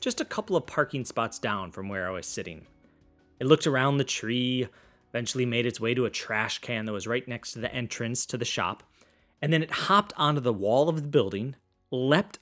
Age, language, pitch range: 30-49, English, 115-150 Hz